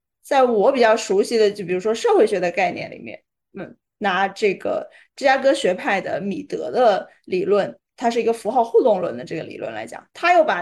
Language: Chinese